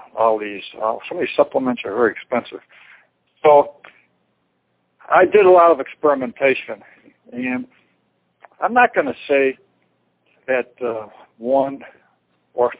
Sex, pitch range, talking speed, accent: male, 115-150 Hz, 120 wpm, American